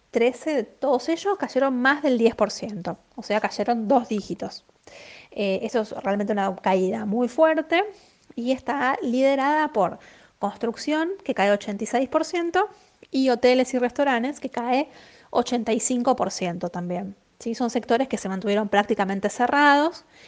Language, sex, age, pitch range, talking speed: Spanish, female, 20-39, 205-270 Hz, 130 wpm